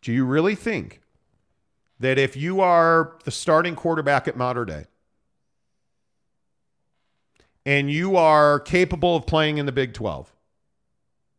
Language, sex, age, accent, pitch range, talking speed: English, male, 40-59, American, 115-165 Hz, 125 wpm